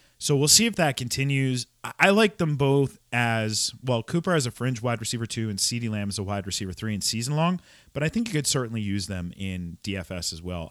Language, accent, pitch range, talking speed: English, American, 100-140 Hz, 235 wpm